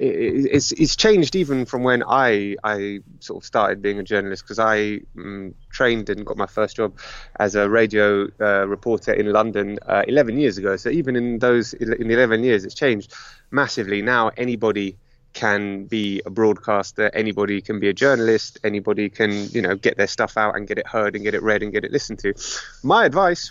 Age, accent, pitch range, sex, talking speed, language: 20-39, British, 105-125 Hz, male, 200 wpm, English